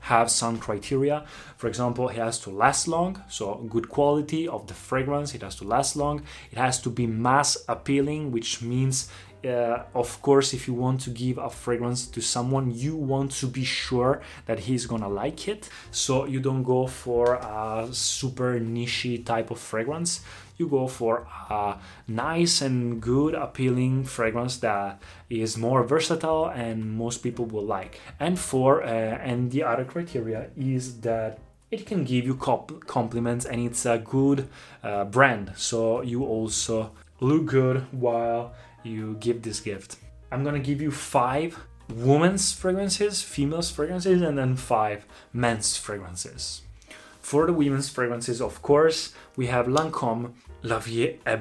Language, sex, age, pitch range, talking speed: Italian, male, 20-39, 115-135 Hz, 160 wpm